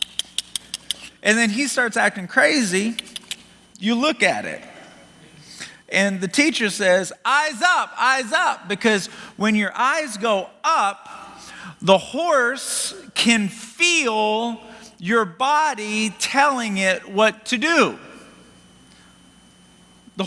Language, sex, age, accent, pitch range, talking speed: English, male, 40-59, American, 180-240 Hz, 105 wpm